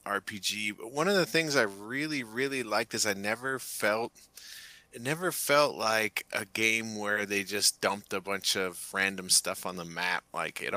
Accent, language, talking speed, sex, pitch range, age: American, English, 190 wpm, male, 90-110 Hz, 30-49